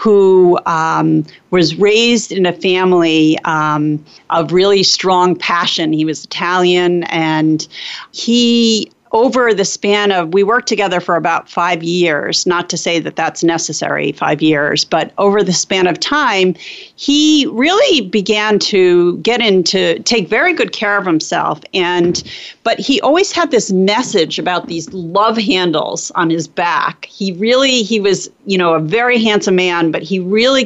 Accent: American